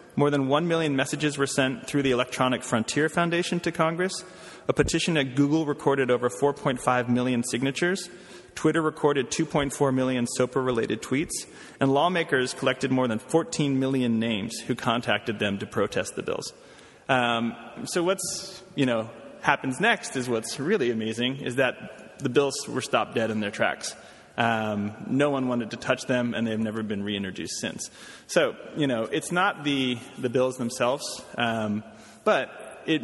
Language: English